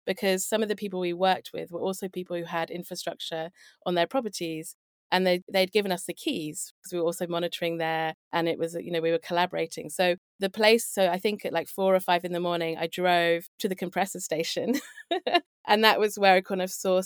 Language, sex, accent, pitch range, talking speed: English, female, British, 165-195 Hz, 230 wpm